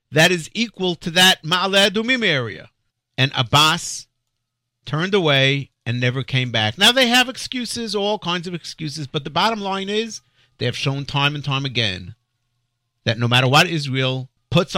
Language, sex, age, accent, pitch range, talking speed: English, male, 50-69, American, 130-205 Hz, 170 wpm